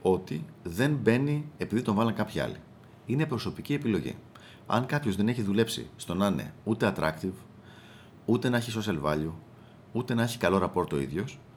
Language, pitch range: Greek, 90-120 Hz